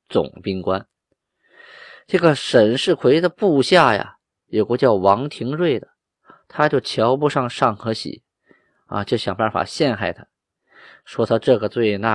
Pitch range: 115-160 Hz